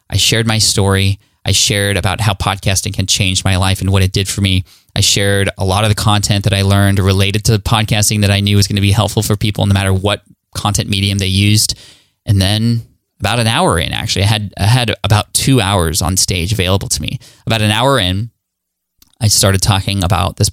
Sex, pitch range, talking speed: male, 100-115 Hz, 220 wpm